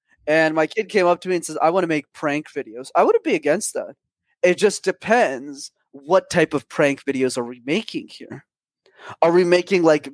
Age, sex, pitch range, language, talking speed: 20-39, male, 140-180 Hz, English, 215 wpm